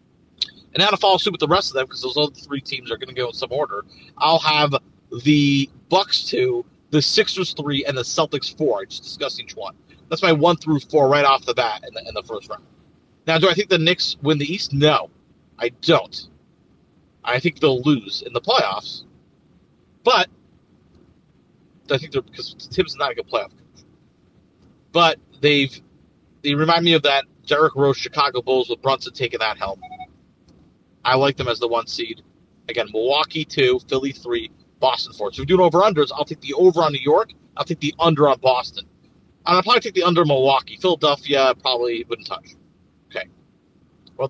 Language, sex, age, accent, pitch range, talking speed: English, male, 40-59, American, 135-175 Hz, 195 wpm